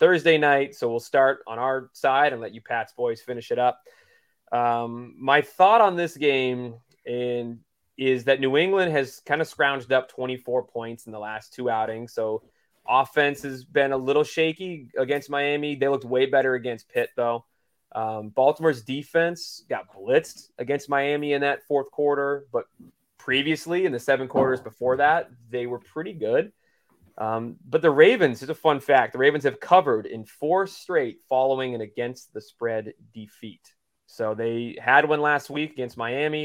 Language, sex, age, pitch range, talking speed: English, male, 20-39, 120-145 Hz, 175 wpm